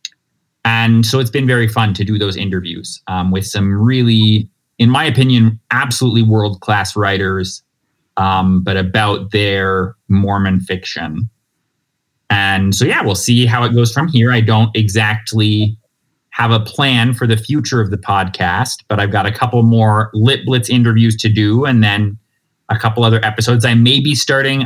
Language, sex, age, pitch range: English, male, 30-49, 105-125 Hz